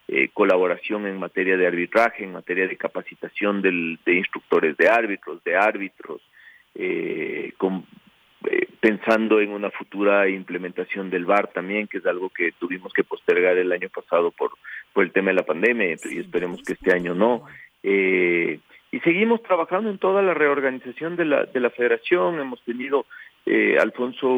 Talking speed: 165 wpm